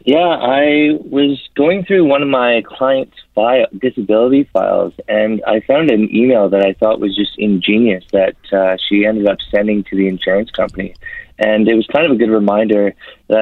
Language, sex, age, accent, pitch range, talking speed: English, male, 20-39, American, 100-115 Hz, 185 wpm